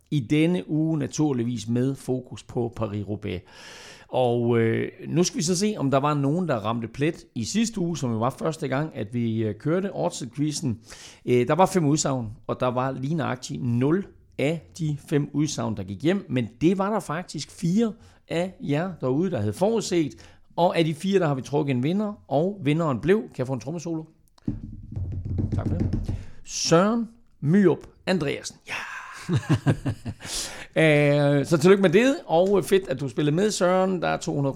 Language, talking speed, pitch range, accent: Danish, 180 wpm, 115-165 Hz, native